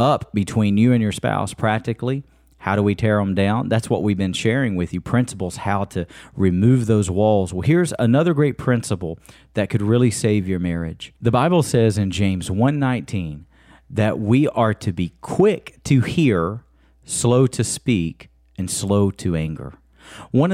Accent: American